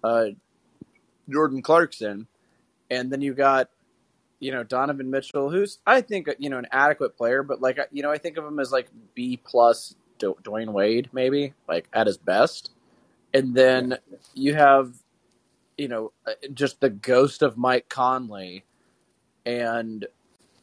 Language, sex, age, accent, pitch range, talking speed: English, male, 20-39, American, 115-145 Hz, 150 wpm